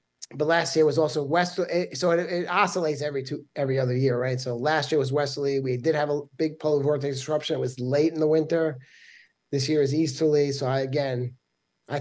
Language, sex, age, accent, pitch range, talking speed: English, male, 30-49, American, 130-165 Hz, 215 wpm